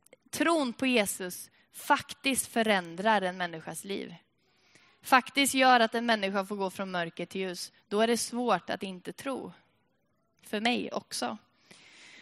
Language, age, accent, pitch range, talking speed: Swedish, 20-39, native, 190-250 Hz, 140 wpm